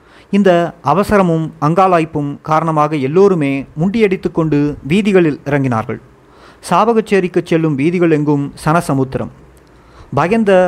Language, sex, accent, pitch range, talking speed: Tamil, male, native, 135-180 Hz, 90 wpm